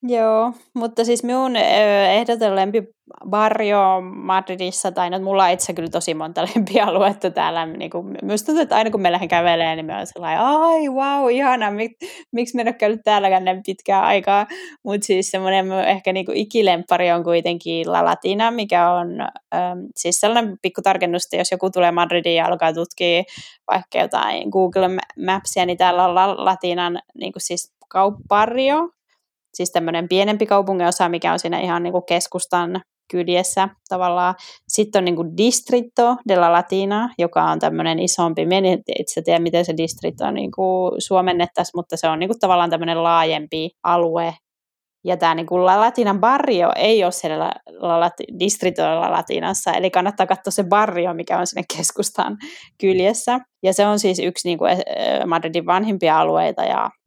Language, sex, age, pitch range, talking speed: Finnish, female, 20-39, 175-215 Hz, 155 wpm